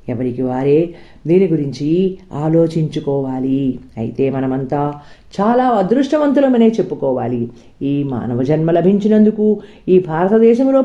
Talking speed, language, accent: 90 wpm, Telugu, native